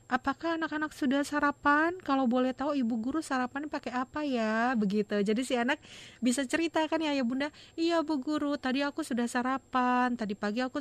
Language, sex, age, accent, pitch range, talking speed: Indonesian, female, 30-49, native, 210-275 Hz, 185 wpm